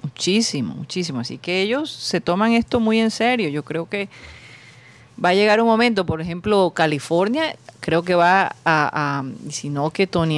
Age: 40-59